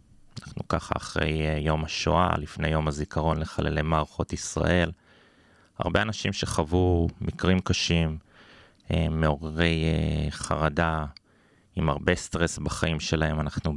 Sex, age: male, 30-49